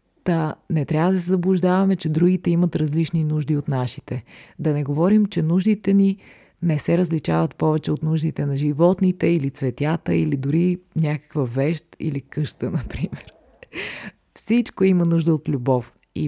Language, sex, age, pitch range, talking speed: Bulgarian, female, 30-49, 140-180 Hz, 160 wpm